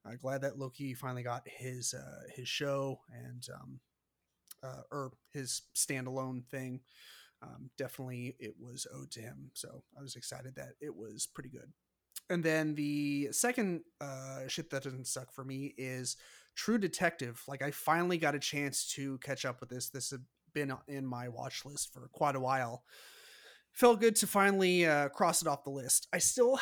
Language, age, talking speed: English, 30-49, 185 wpm